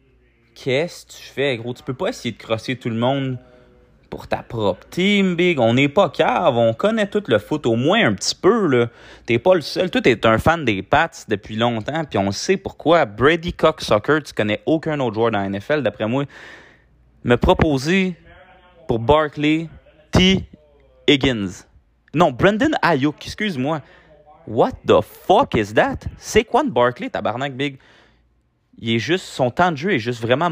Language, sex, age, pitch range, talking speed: French, male, 30-49, 105-150 Hz, 185 wpm